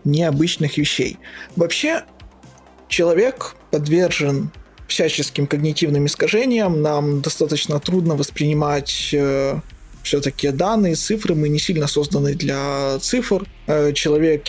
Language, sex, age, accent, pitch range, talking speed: Ukrainian, male, 20-39, native, 145-170 Hz, 100 wpm